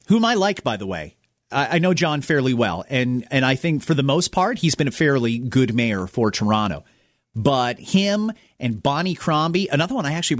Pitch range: 120-180 Hz